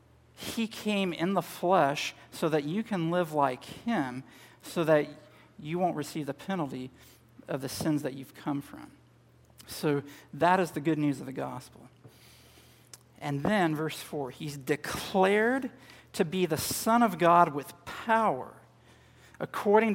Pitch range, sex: 140-190 Hz, male